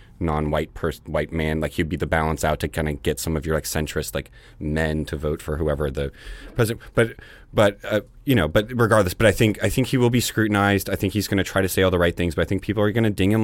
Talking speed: 285 wpm